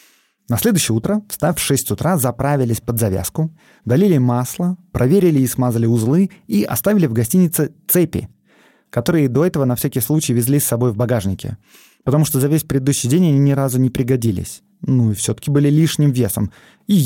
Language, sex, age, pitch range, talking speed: Russian, male, 20-39, 115-160 Hz, 175 wpm